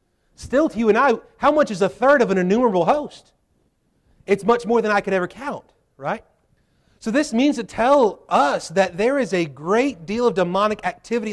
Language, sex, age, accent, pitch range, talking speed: English, male, 40-59, American, 170-235 Hz, 200 wpm